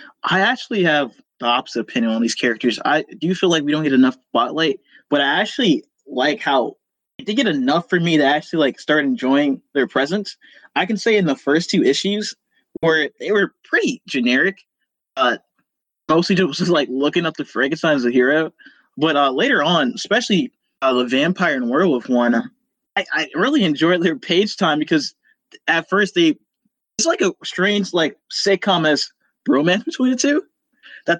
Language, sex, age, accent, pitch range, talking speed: English, male, 20-39, American, 140-205 Hz, 180 wpm